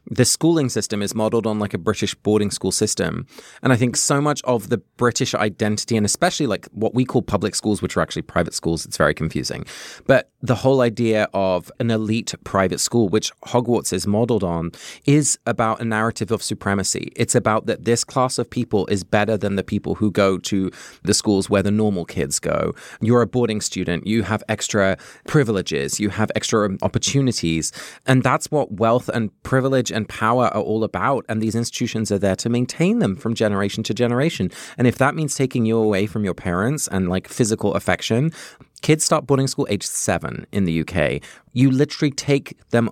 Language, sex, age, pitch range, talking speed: English, male, 20-39, 100-120 Hz, 195 wpm